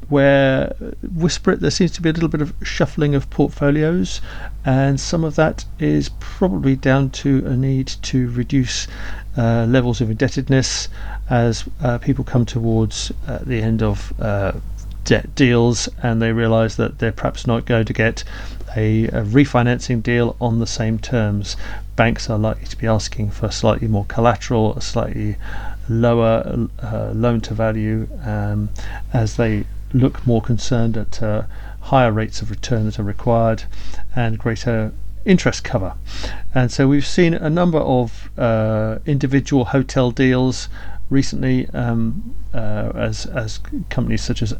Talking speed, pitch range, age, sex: 155 wpm, 105-125 Hz, 40-59, male